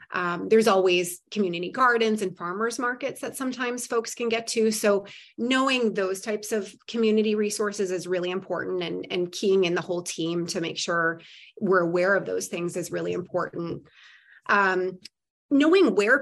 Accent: American